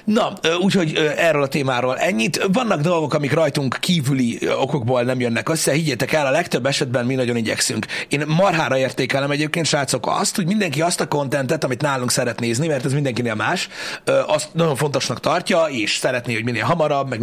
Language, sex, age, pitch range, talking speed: Hungarian, male, 30-49, 125-165 Hz, 180 wpm